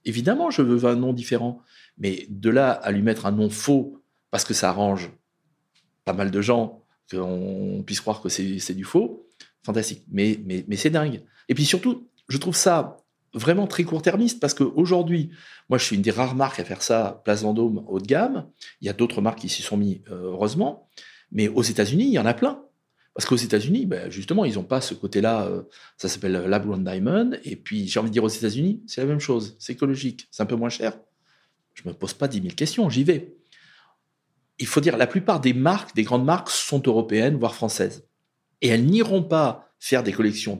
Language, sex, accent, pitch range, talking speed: French, male, French, 105-160 Hz, 215 wpm